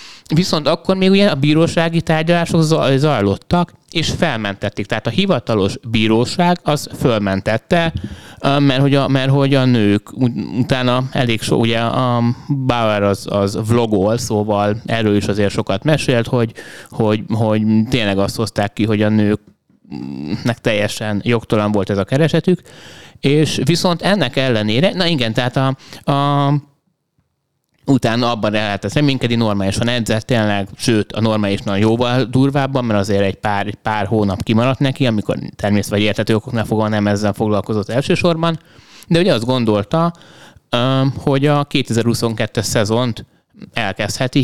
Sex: male